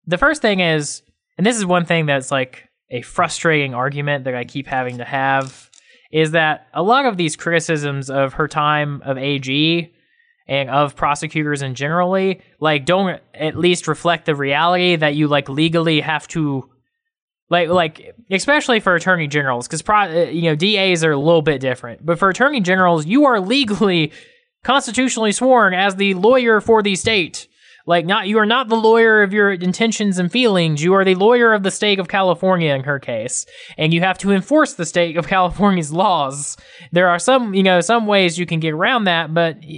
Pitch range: 150-200 Hz